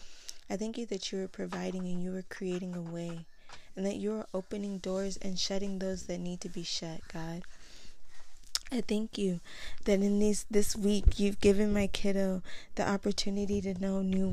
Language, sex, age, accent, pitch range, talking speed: English, female, 20-39, American, 180-200 Hz, 185 wpm